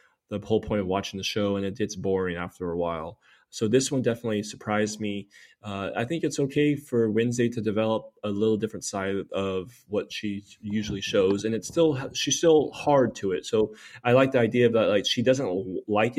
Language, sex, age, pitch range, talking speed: English, male, 20-39, 105-120 Hz, 210 wpm